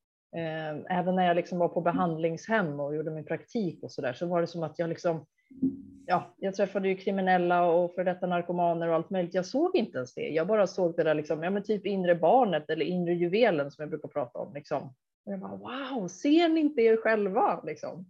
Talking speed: 220 wpm